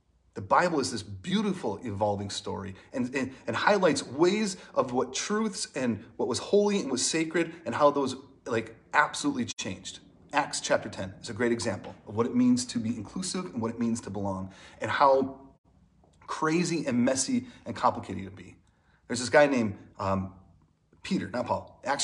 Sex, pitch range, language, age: male, 110-185 Hz, English, 30-49